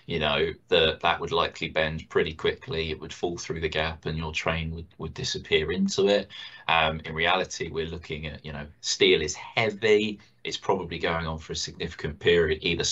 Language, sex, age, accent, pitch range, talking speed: English, male, 20-39, British, 80-95 Hz, 195 wpm